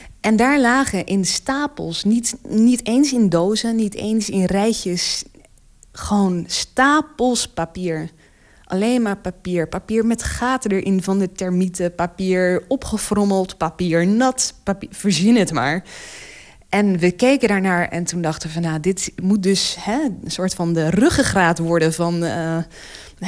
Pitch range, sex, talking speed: 170-215 Hz, female, 145 wpm